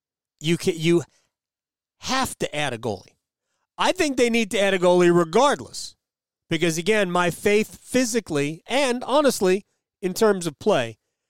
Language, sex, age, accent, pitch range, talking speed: English, male, 40-59, American, 145-215 Hz, 150 wpm